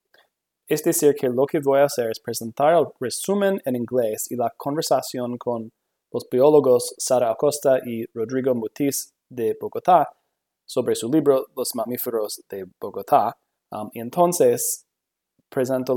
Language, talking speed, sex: English, 145 wpm, male